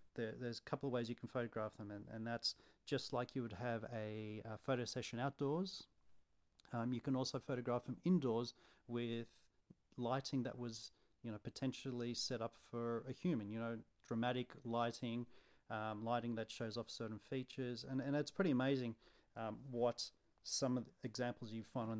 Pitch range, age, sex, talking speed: 115-135 Hz, 40-59, male, 185 wpm